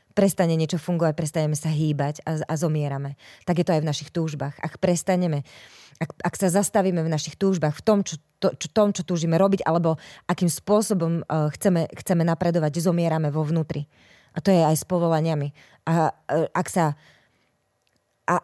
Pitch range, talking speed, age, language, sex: 150-185 Hz, 180 wpm, 20-39, Slovak, female